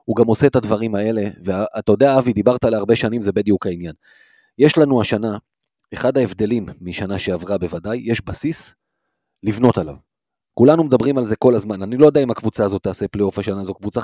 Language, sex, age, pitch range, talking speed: Hebrew, male, 30-49, 110-150 Hz, 190 wpm